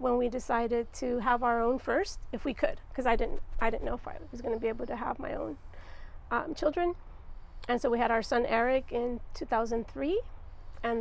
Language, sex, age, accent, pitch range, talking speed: English, female, 40-59, American, 230-275 Hz, 215 wpm